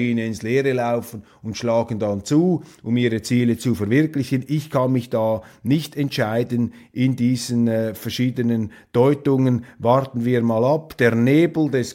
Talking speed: 150 wpm